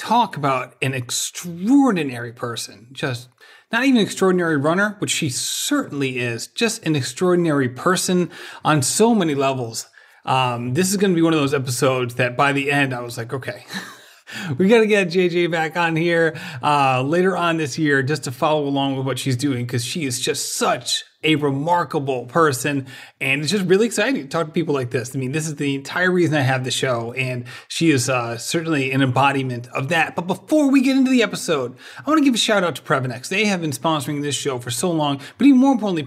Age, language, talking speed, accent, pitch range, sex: 30-49, English, 215 wpm, American, 135-190 Hz, male